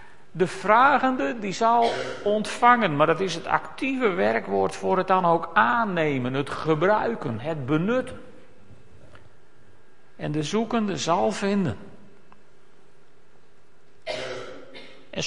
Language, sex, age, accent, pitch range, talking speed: Dutch, male, 50-69, Dutch, 180-230 Hz, 100 wpm